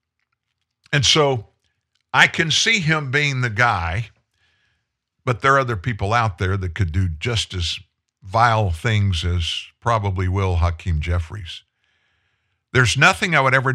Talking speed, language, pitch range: 145 wpm, English, 95-125 Hz